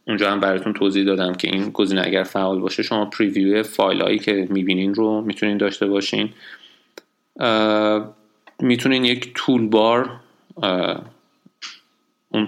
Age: 30-49